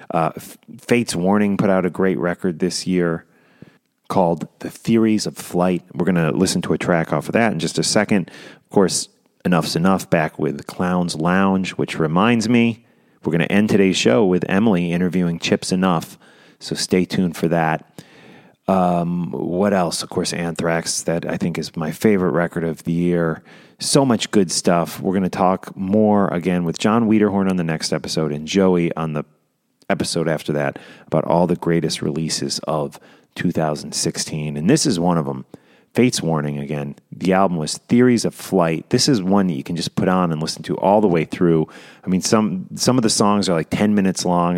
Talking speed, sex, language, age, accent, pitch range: 195 wpm, male, English, 30-49, American, 85-100 Hz